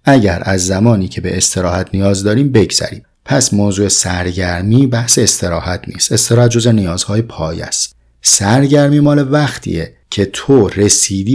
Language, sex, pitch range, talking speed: Persian, male, 95-120 Hz, 130 wpm